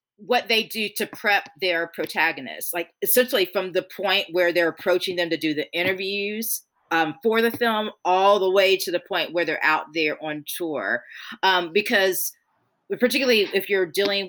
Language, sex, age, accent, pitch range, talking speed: English, female, 40-59, American, 160-200 Hz, 175 wpm